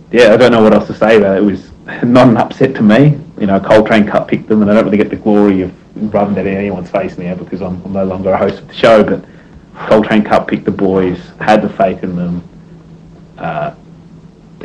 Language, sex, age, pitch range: English, male, 30-49, 95-110 Hz